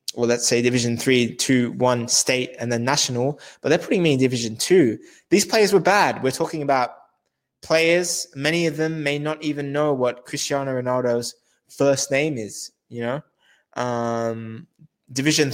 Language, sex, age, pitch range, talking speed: English, male, 20-39, 125-170 Hz, 170 wpm